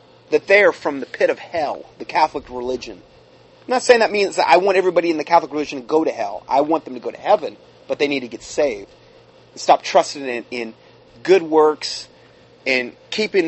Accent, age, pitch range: American, 30-49, 140-185 Hz